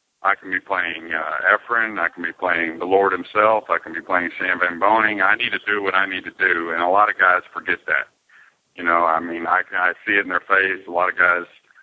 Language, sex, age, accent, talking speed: English, male, 50-69, American, 260 wpm